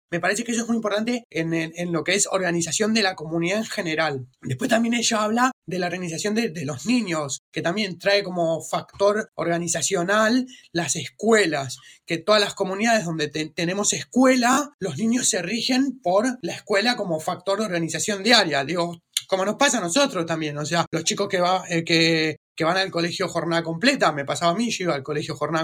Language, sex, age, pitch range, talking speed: Spanish, male, 20-39, 160-210 Hz, 205 wpm